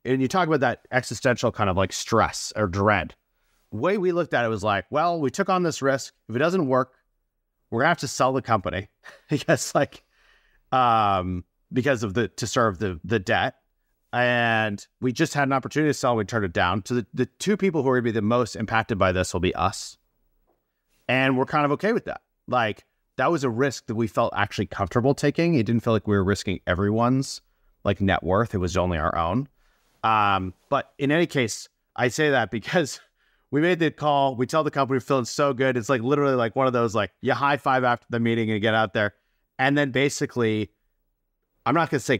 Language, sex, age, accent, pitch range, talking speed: English, male, 30-49, American, 105-140 Hz, 230 wpm